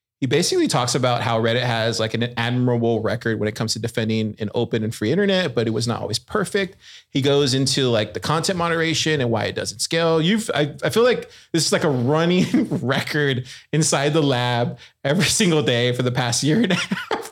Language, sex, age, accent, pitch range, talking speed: English, male, 30-49, American, 115-155 Hz, 220 wpm